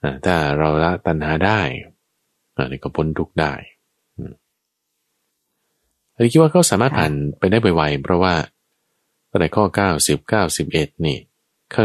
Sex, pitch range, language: male, 80-110 Hz, Thai